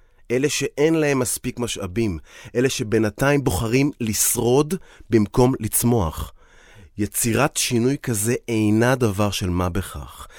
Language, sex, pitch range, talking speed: Hebrew, male, 105-140 Hz, 110 wpm